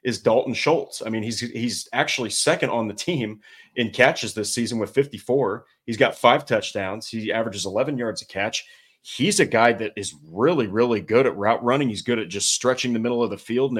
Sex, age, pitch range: male, 30-49, 105-120 Hz